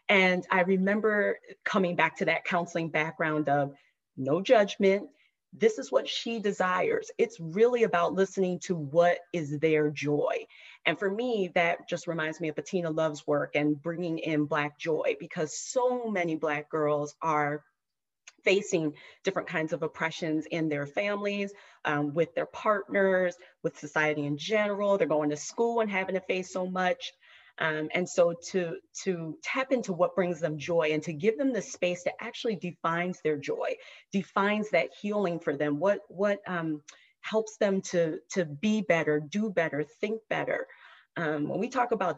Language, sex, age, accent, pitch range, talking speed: English, female, 30-49, American, 160-210 Hz, 170 wpm